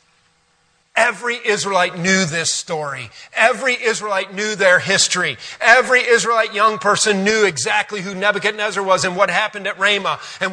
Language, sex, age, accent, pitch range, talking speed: English, male, 40-59, American, 155-210 Hz, 140 wpm